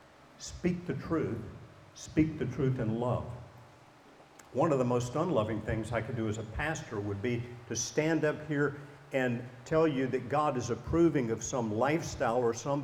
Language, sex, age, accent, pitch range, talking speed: English, male, 50-69, American, 110-140 Hz, 180 wpm